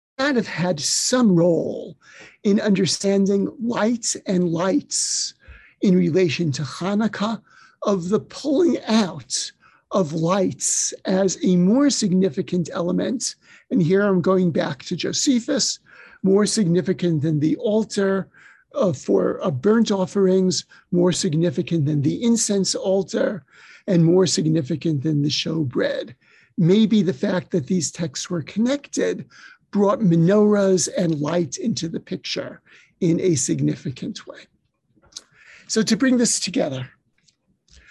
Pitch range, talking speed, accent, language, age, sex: 180-225 Hz, 125 wpm, American, English, 50-69, male